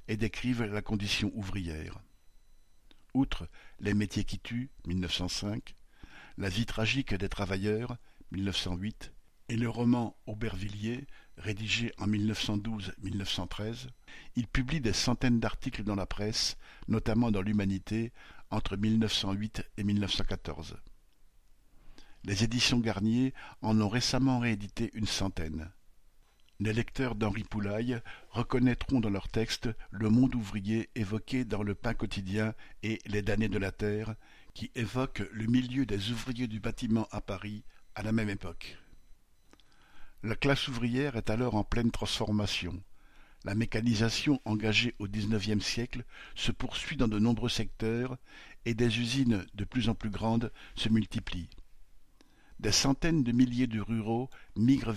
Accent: French